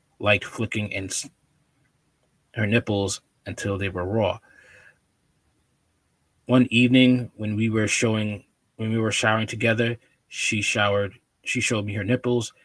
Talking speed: 130 wpm